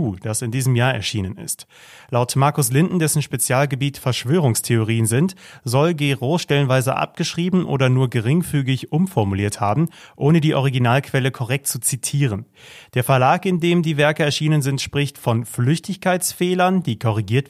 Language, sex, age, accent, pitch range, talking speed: German, male, 30-49, German, 120-145 Hz, 140 wpm